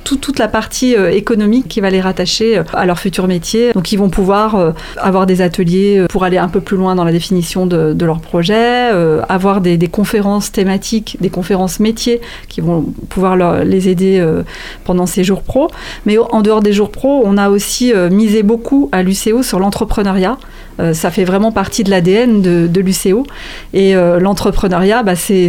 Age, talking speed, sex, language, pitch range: 30-49, 185 wpm, female, French, 185-220 Hz